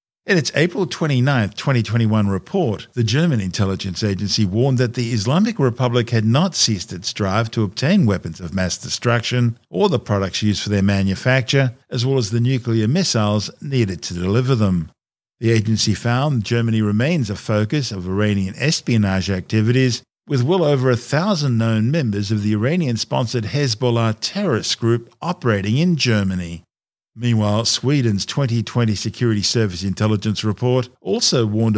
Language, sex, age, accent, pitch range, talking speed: English, male, 50-69, Australian, 105-130 Hz, 150 wpm